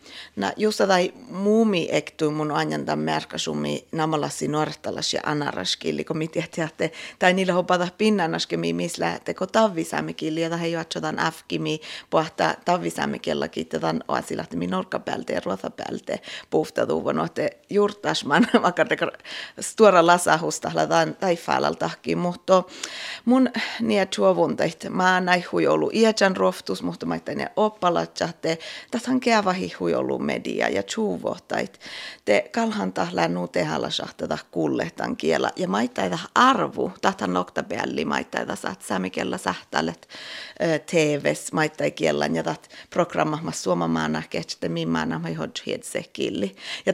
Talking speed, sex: 95 wpm, female